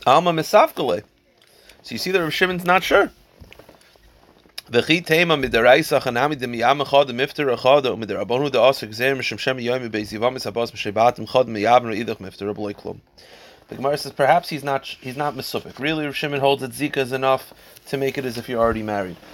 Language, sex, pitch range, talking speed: English, male, 105-140 Hz, 100 wpm